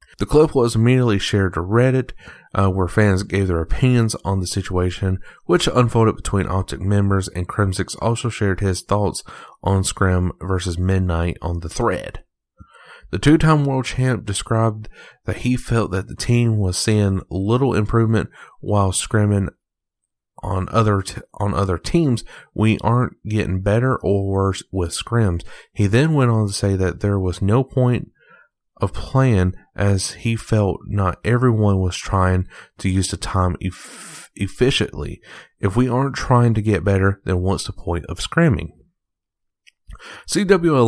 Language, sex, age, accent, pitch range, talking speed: English, male, 30-49, American, 95-120 Hz, 155 wpm